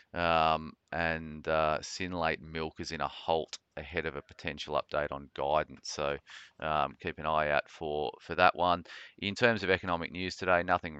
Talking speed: 180 wpm